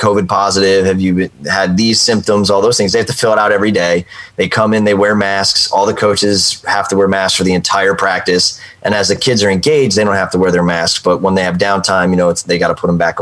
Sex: male